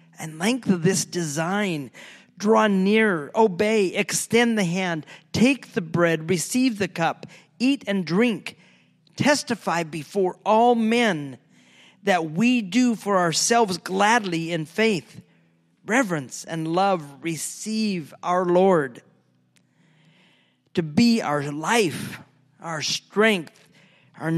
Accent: American